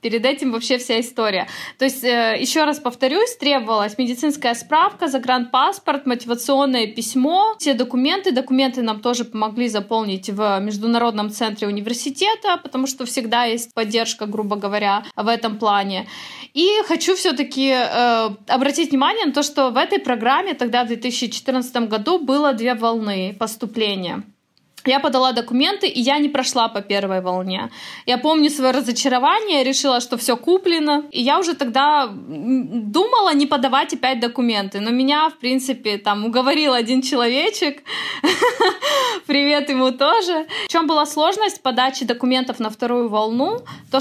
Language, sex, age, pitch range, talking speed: Russian, female, 20-39, 225-285 Hz, 145 wpm